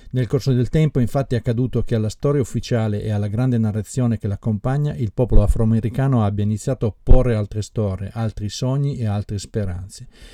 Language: Italian